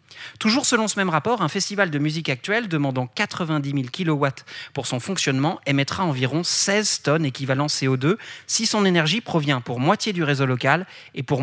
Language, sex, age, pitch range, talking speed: French, male, 30-49, 130-170 Hz, 180 wpm